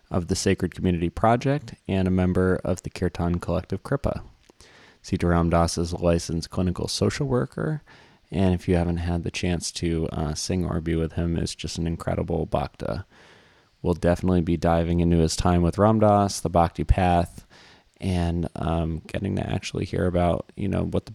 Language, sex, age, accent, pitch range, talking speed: English, male, 20-39, American, 85-100 Hz, 180 wpm